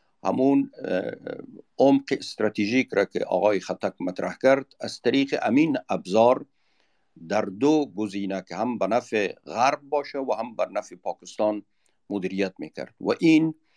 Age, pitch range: 50-69, 100-125 Hz